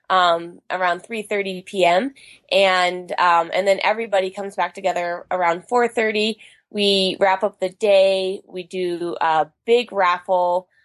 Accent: American